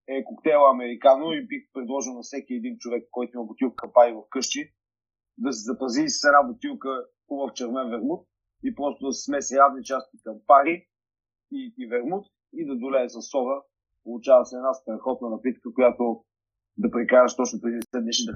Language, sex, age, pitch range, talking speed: Bulgarian, male, 40-59, 115-150 Hz, 180 wpm